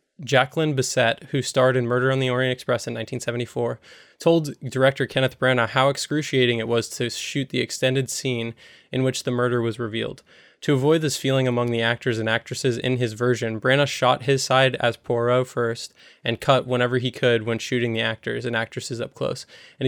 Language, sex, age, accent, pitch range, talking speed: English, male, 20-39, American, 115-130 Hz, 195 wpm